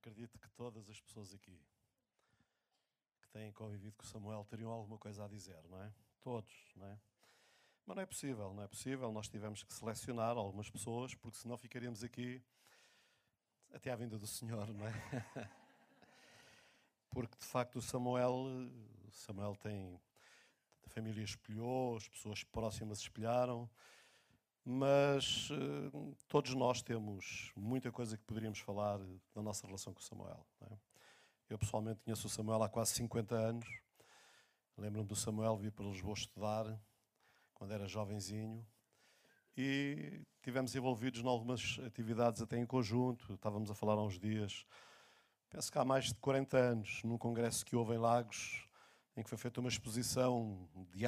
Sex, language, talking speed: male, Portuguese, 155 wpm